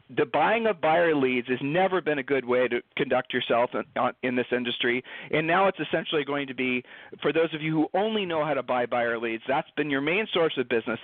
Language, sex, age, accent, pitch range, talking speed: English, male, 40-59, American, 130-175 Hz, 245 wpm